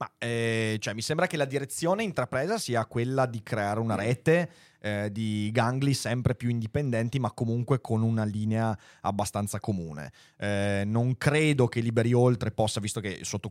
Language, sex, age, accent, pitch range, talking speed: Italian, male, 30-49, native, 105-130 Hz, 165 wpm